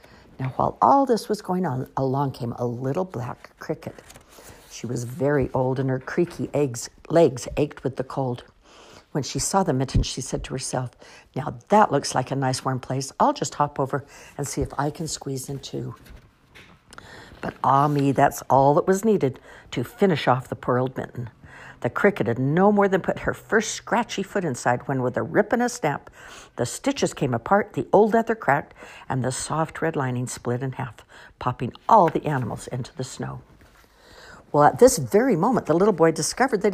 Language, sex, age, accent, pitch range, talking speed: English, female, 60-79, American, 130-185 Hz, 200 wpm